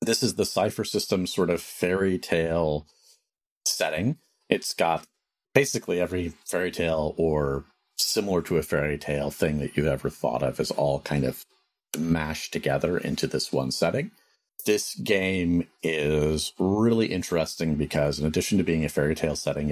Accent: American